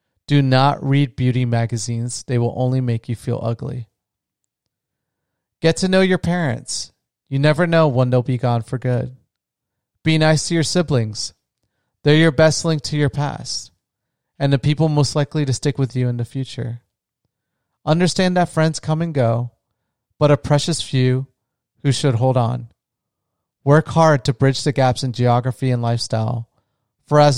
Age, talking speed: 30-49, 165 wpm